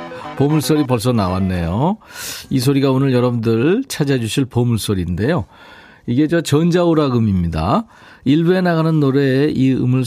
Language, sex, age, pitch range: Korean, male, 40-59, 105-155 Hz